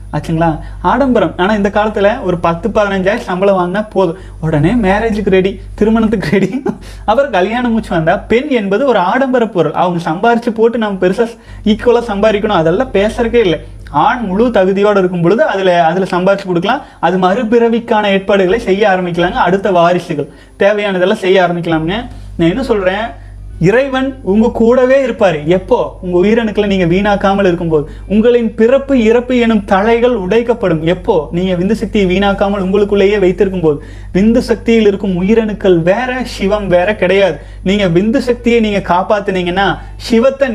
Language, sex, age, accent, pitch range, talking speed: Tamil, male, 30-49, native, 180-230 Hz, 140 wpm